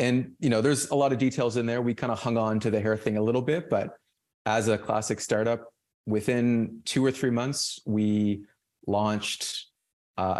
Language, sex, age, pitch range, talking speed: English, male, 30-49, 100-115 Hz, 200 wpm